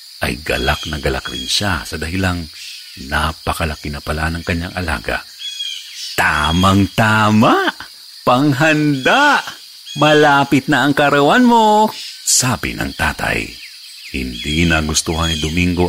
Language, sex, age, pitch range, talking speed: Filipino, male, 50-69, 80-105 Hz, 115 wpm